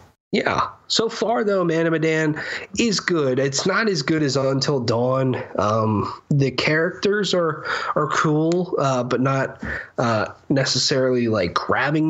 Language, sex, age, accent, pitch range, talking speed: English, male, 20-39, American, 110-145 Hz, 135 wpm